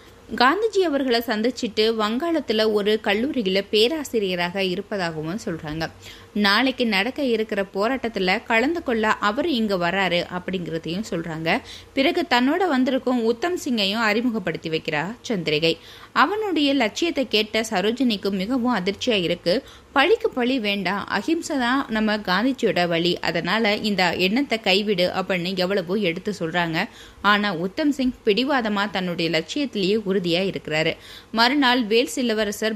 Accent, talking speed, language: native, 70 wpm, Tamil